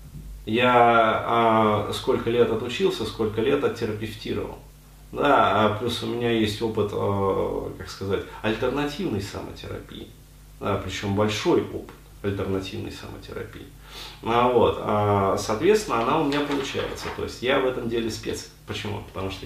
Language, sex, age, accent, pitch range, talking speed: Russian, male, 30-49, native, 105-130 Hz, 115 wpm